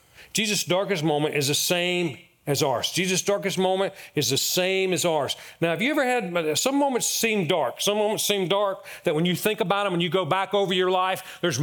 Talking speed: 220 wpm